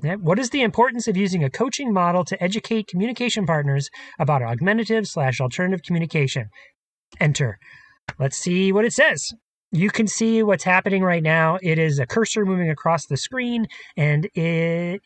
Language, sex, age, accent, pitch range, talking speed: English, male, 30-49, American, 155-200 Hz, 165 wpm